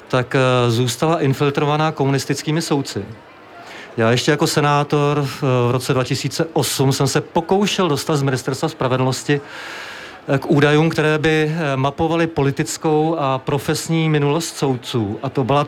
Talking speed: 125 wpm